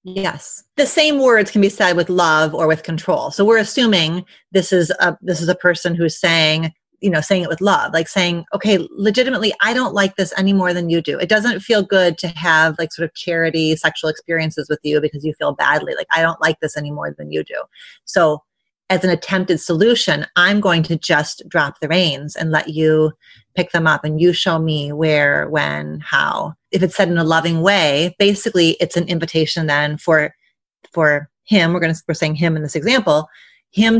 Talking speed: 215 wpm